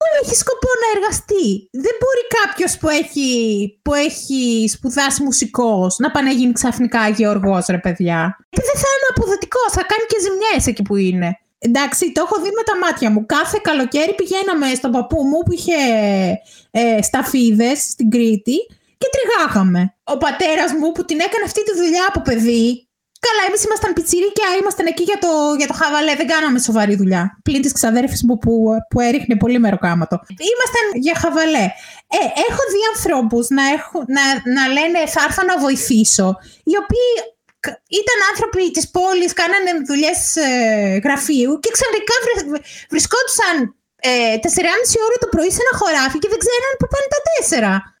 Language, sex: Greek, female